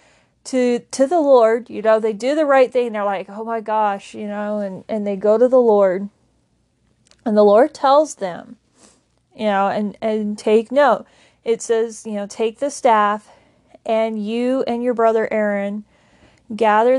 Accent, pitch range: American, 210-235 Hz